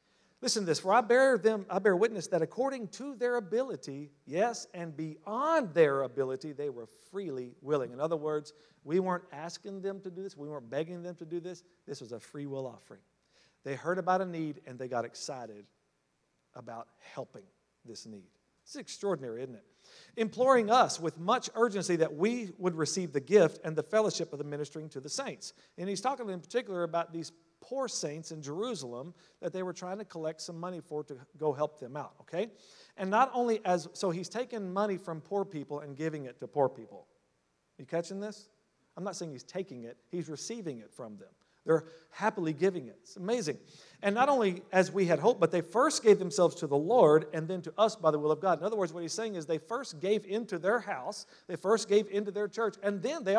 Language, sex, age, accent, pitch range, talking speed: English, male, 50-69, American, 150-210 Hz, 215 wpm